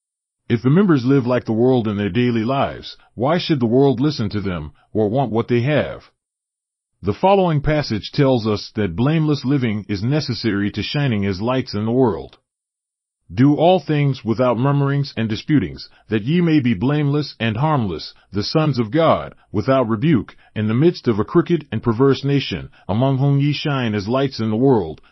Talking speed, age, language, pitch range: 185 wpm, 30-49, English, 110-145 Hz